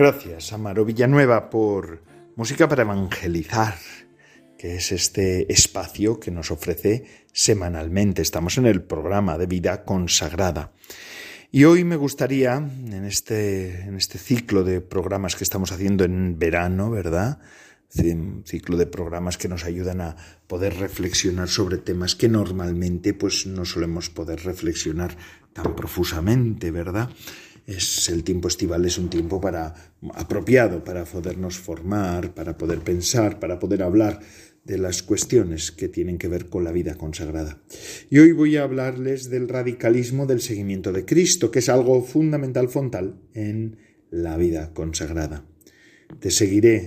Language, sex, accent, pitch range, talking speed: Spanish, male, Spanish, 90-115 Hz, 140 wpm